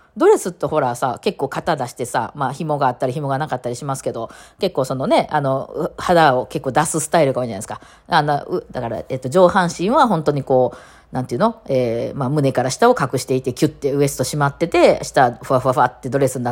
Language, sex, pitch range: Japanese, female, 135-220 Hz